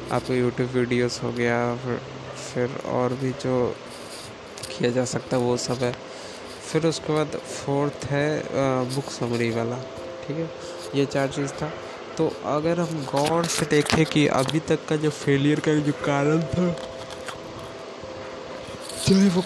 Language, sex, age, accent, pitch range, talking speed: Hindi, male, 20-39, native, 125-150 Hz, 150 wpm